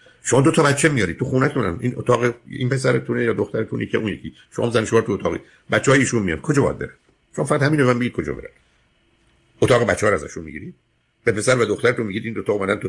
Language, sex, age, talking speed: Persian, male, 50-69, 235 wpm